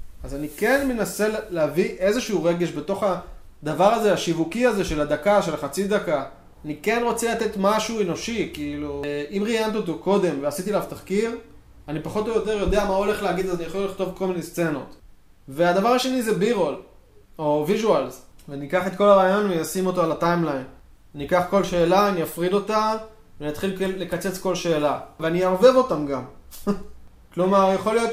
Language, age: Hebrew, 20-39